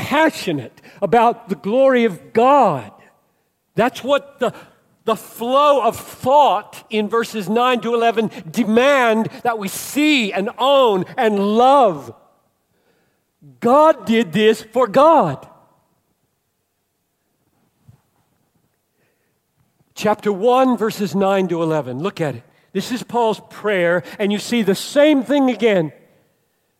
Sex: male